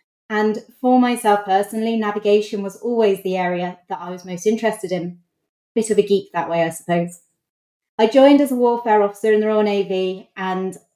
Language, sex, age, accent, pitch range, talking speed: English, female, 30-49, British, 185-225 Hz, 185 wpm